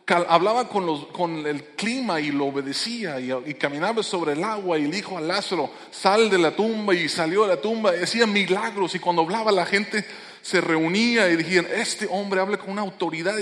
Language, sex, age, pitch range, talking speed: English, male, 20-39, 150-195 Hz, 205 wpm